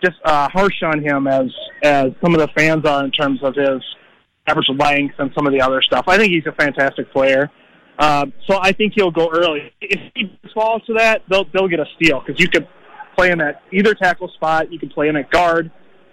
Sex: male